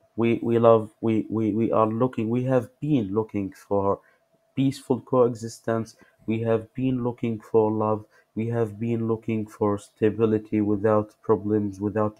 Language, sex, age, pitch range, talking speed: English, male, 30-49, 105-120 Hz, 150 wpm